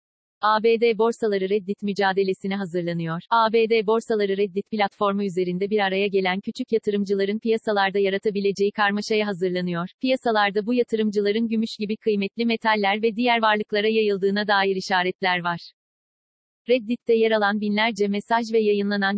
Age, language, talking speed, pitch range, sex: 40-59, Turkish, 125 wpm, 200-225 Hz, female